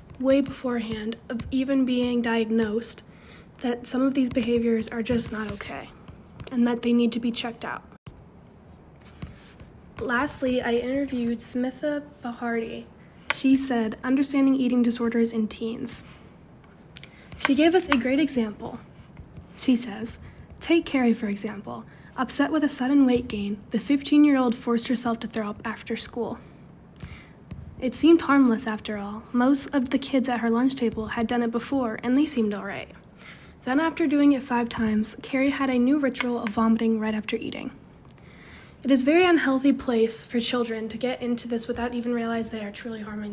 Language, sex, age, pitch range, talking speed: English, female, 10-29, 230-265 Hz, 170 wpm